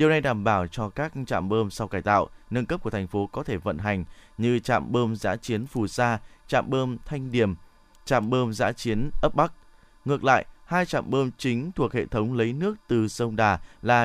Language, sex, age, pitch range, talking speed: Vietnamese, male, 20-39, 105-135 Hz, 220 wpm